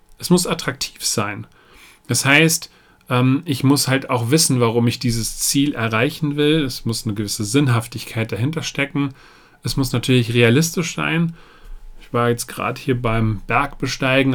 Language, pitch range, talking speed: German, 115-140 Hz, 150 wpm